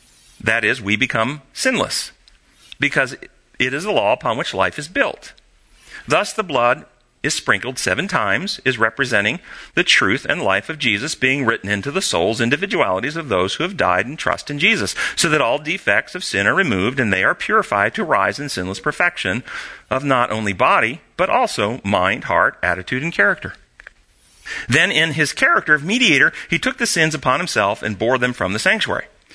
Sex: male